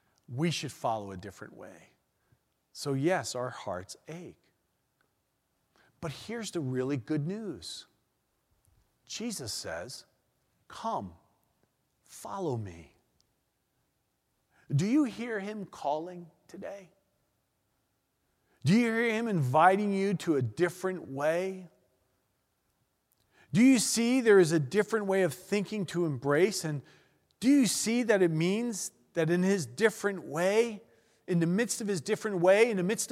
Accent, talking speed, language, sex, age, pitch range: American, 130 wpm, English, male, 40-59, 135-205 Hz